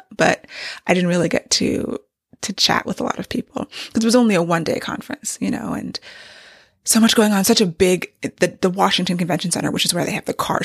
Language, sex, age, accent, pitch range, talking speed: English, female, 20-39, American, 180-250 Hz, 240 wpm